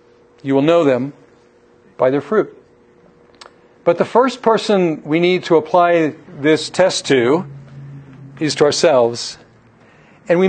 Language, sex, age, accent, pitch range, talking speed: English, male, 50-69, American, 140-180 Hz, 130 wpm